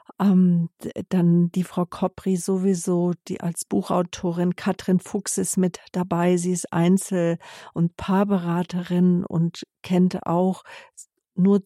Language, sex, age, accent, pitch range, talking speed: German, female, 50-69, German, 175-195 Hz, 115 wpm